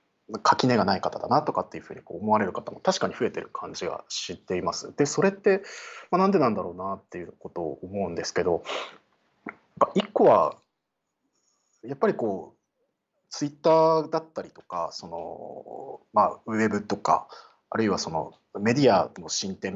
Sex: male